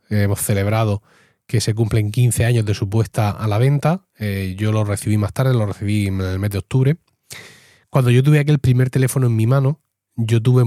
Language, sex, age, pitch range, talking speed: Spanish, male, 30-49, 110-135 Hz, 210 wpm